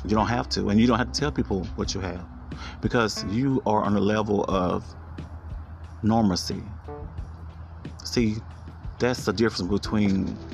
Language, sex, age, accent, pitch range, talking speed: English, male, 30-49, American, 90-110 Hz, 155 wpm